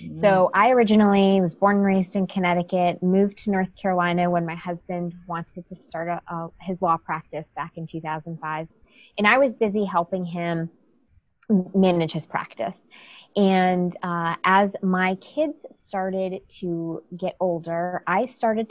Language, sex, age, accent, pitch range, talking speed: English, female, 20-39, American, 170-195 Hz, 150 wpm